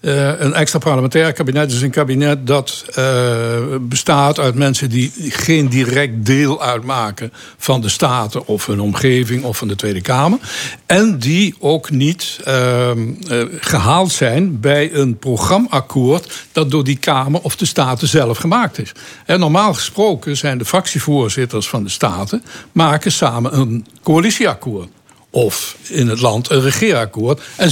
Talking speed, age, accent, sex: 150 wpm, 60-79, Dutch, male